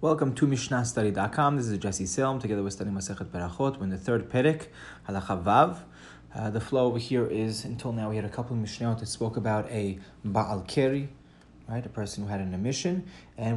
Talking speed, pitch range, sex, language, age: 210 wpm, 100-135 Hz, male, English, 30-49